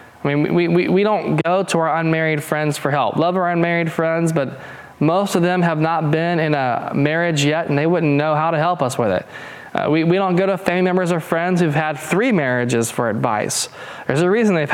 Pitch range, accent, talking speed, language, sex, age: 125-165 Hz, American, 235 wpm, English, male, 20-39